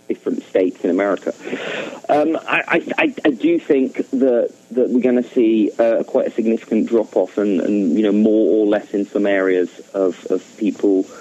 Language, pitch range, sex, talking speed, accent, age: English, 100-125 Hz, male, 185 wpm, British, 40-59